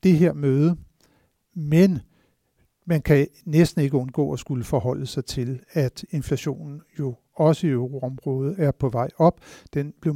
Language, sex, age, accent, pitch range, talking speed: Danish, male, 60-79, native, 130-150 Hz, 155 wpm